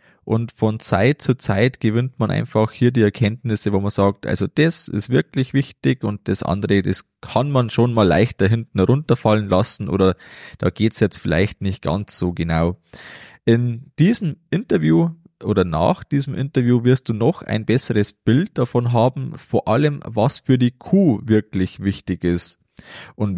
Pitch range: 100-135 Hz